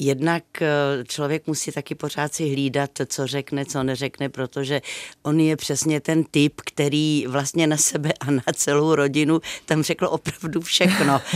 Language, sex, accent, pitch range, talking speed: Czech, female, native, 135-160 Hz, 155 wpm